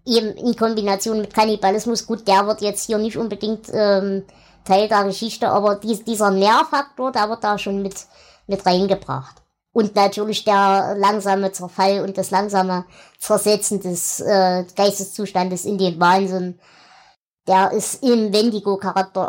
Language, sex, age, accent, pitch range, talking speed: German, male, 20-39, German, 195-255 Hz, 145 wpm